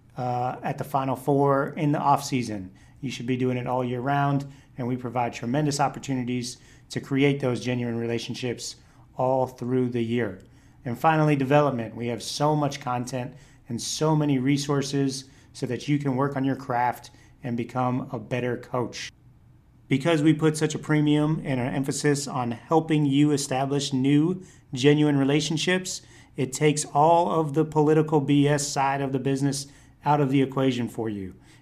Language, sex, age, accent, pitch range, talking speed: English, male, 40-59, American, 125-145 Hz, 170 wpm